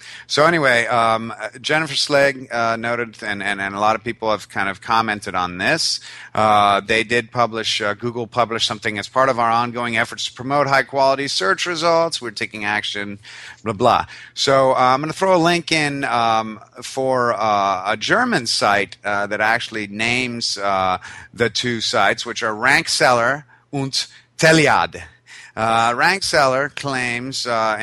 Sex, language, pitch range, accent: male, English, 105-130 Hz, American